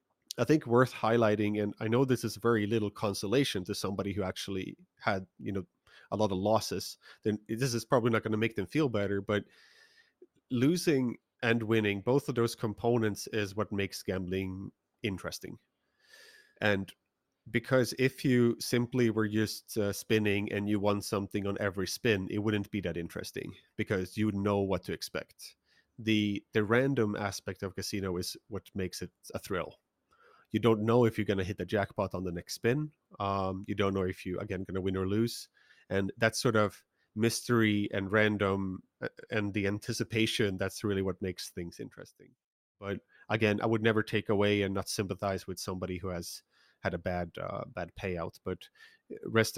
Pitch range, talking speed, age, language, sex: 100-115 Hz, 180 wpm, 30-49, English, male